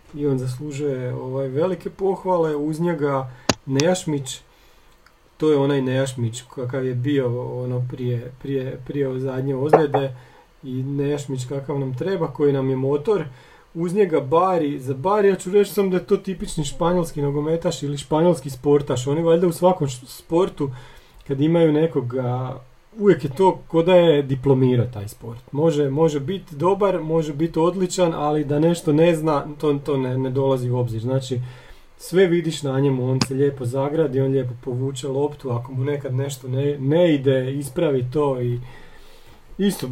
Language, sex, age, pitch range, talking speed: Croatian, male, 40-59, 130-165 Hz, 160 wpm